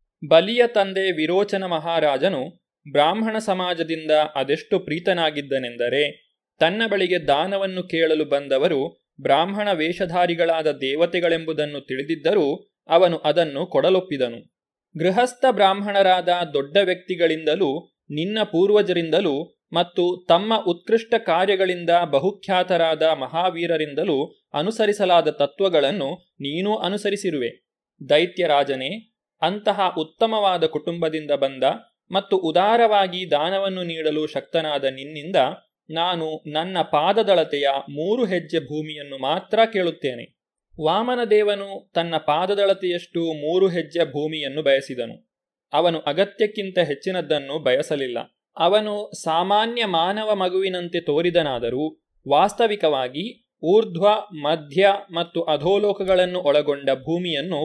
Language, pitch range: Kannada, 155-195 Hz